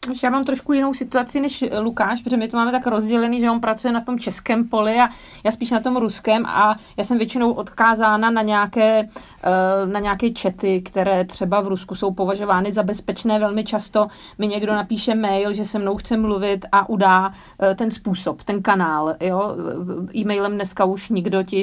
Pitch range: 195-240 Hz